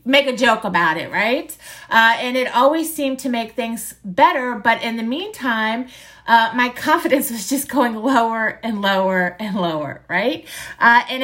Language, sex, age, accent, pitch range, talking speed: English, female, 30-49, American, 230-285 Hz, 175 wpm